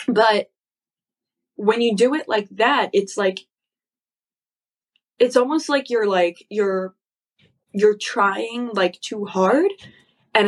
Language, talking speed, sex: English, 120 wpm, female